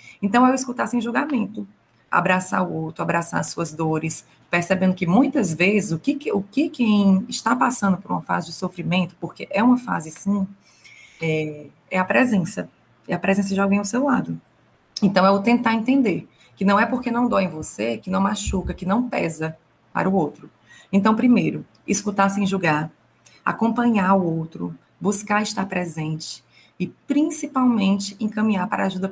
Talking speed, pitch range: 175 wpm, 175-235 Hz